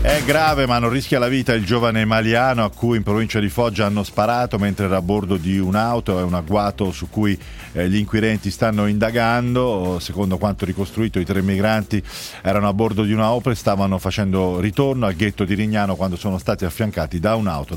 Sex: male